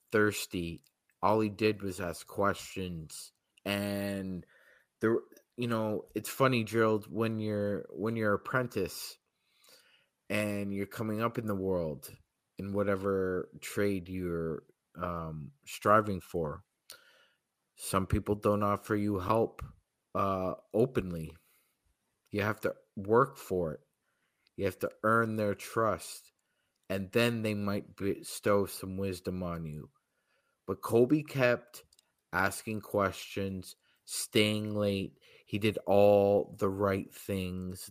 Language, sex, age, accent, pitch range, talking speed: English, male, 30-49, American, 95-110 Hz, 120 wpm